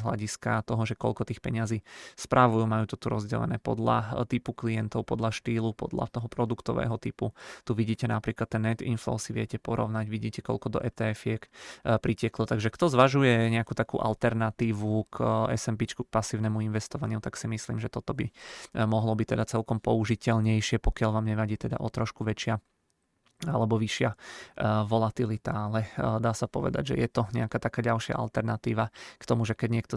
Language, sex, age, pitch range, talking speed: Czech, male, 20-39, 110-120 Hz, 165 wpm